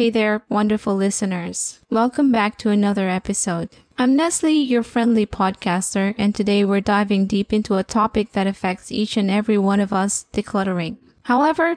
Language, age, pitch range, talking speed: English, 20-39, 195-225 Hz, 165 wpm